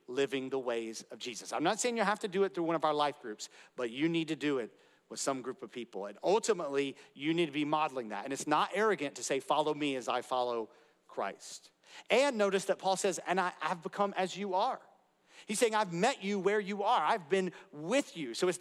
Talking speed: 245 wpm